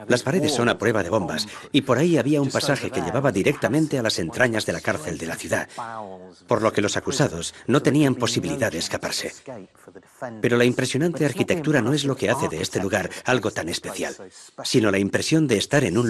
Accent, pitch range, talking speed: Spanish, 90-130 Hz, 215 wpm